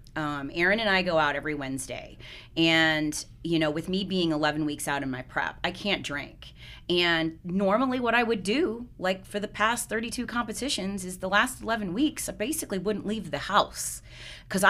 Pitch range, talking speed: 150-210 Hz, 190 wpm